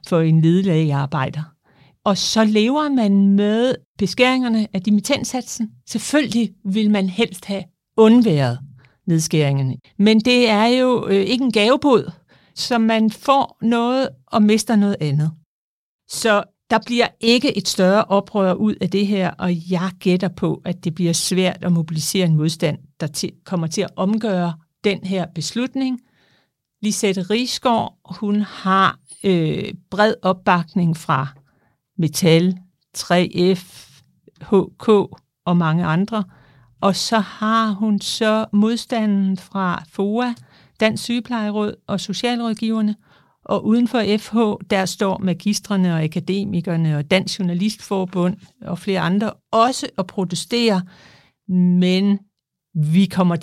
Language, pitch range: Danish, 170-220 Hz